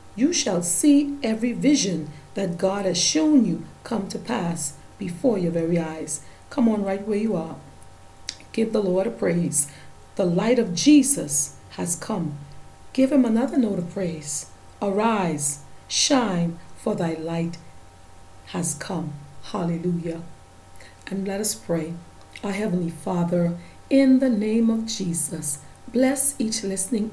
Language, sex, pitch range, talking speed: English, female, 170-225 Hz, 140 wpm